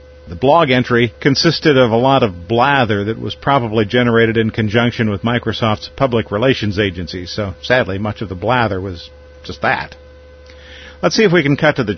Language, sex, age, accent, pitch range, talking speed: English, male, 50-69, American, 85-130 Hz, 185 wpm